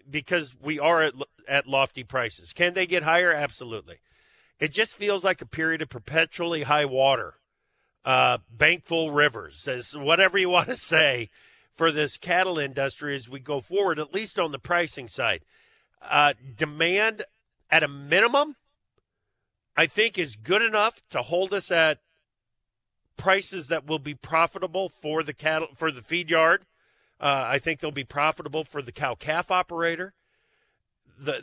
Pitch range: 140-175 Hz